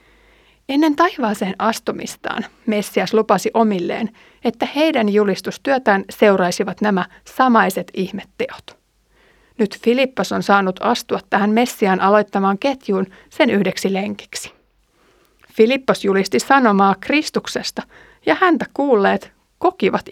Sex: female